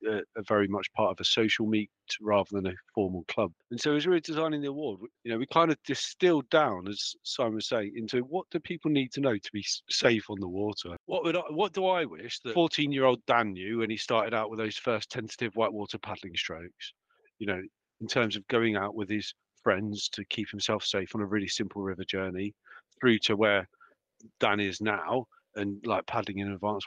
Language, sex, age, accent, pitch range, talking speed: English, male, 40-59, British, 100-135 Hz, 225 wpm